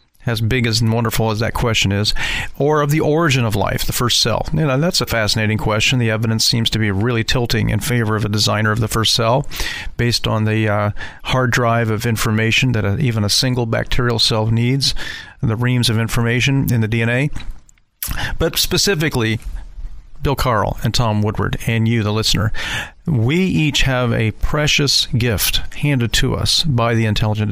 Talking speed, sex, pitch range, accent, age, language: 190 wpm, male, 110-135 Hz, American, 40-59, English